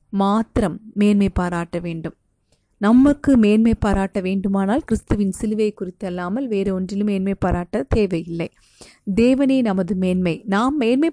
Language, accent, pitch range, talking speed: Tamil, native, 190-230 Hz, 120 wpm